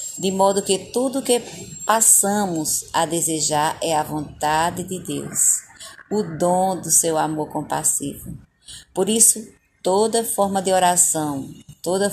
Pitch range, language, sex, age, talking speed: 165-205 Hz, Portuguese, female, 20-39, 135 wpm